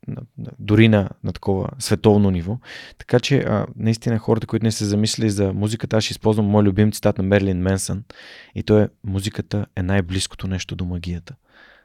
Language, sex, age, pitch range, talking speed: Bulgarian, male, 30-49, 95-115 Hz, 175 wpm